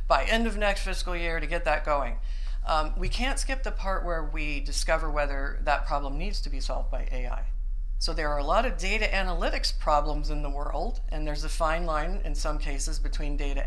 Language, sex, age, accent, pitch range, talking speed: English, female, 50-69, American, 140-180 Hz, 220 wpm